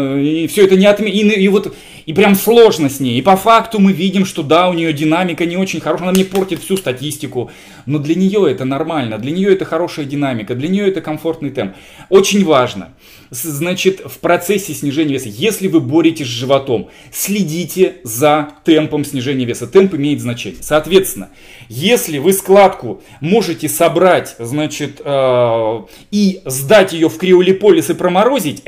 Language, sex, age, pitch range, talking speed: Russian, male, 20-39, 135-185 Hz, 165 wpm